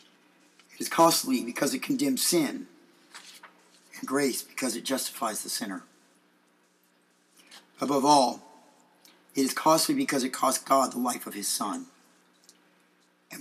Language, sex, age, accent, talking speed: English, male, 50-69, American, 130 wpm